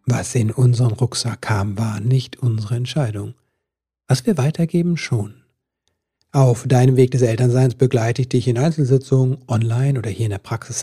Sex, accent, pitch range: male, German, 110-140 Hz